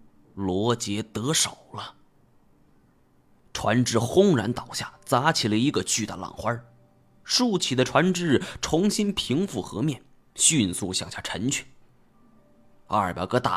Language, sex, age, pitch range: Chinese, male, 30-49, 105-170 Hz